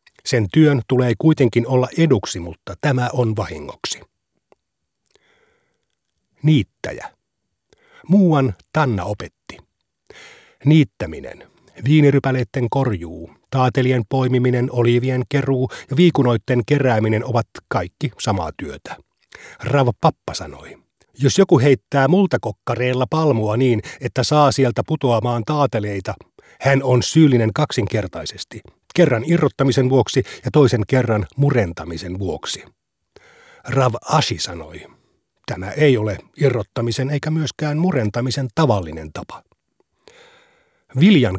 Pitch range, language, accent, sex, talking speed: 115-145 Hz, Finnish, native, male, 95 wpm